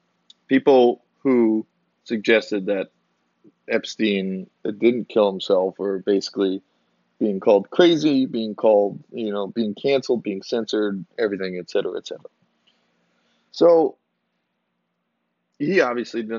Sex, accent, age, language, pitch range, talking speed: male, American, 20-39, English, 100-120 Hz, 105 wpm